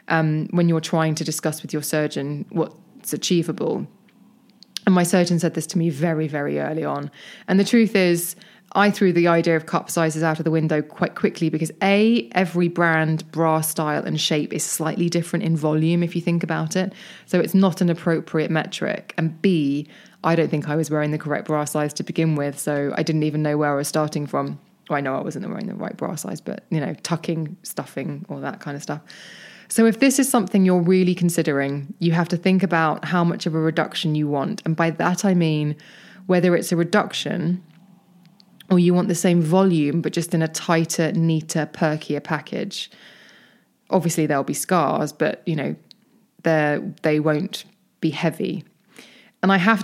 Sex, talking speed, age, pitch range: female, 195 wpm, 20-39, 155-195 Hz